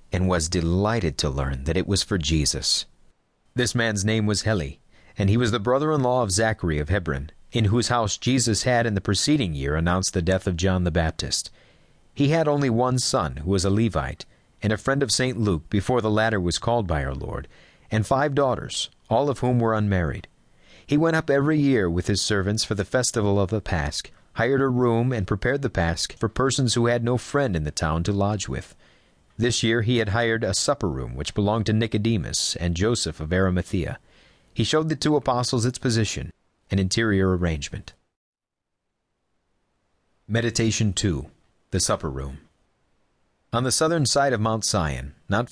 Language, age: English, 40-59